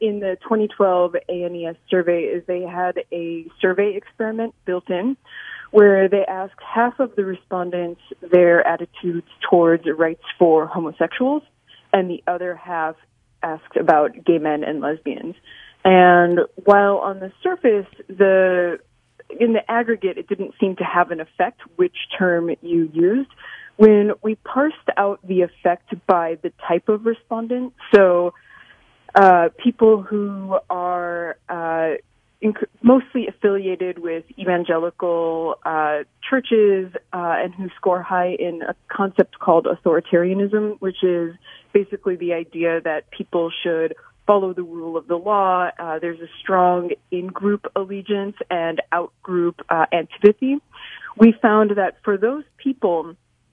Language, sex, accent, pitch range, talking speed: English, female, American, 170-210 Hz, 135 wpm